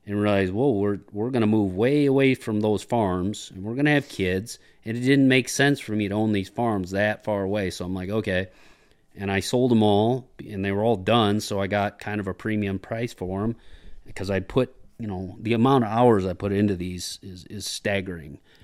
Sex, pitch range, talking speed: male, 100-115 Hz, 235 wpm